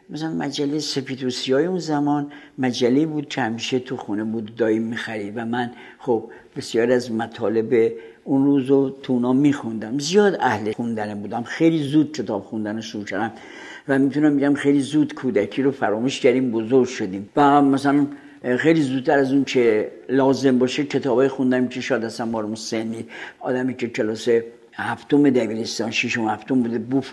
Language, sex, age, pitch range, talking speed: Persian, male, 60-79, 125-155 Hz, 155 wpm